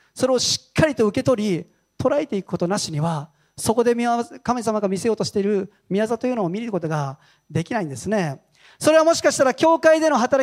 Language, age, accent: Japanese, 40-59, native